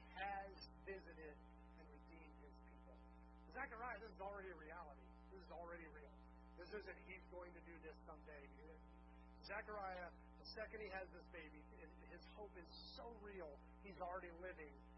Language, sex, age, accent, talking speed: English, male, 30-49, American, 155 wpm